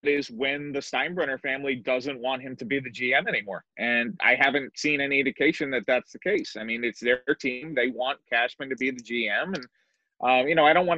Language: English